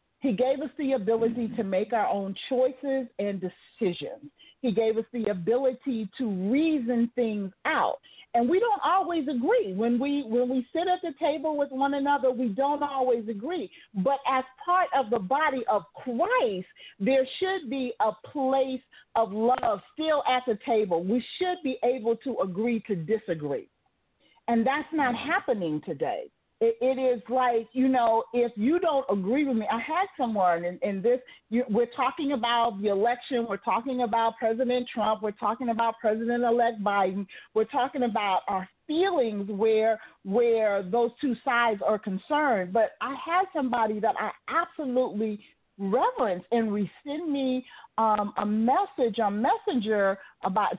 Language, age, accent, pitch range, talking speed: English, 40-59, American, 220-275 Hz, 160 wpm